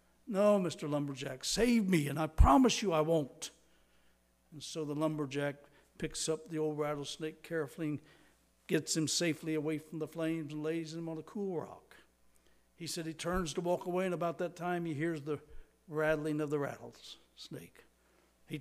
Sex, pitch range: male, 140-165 Hz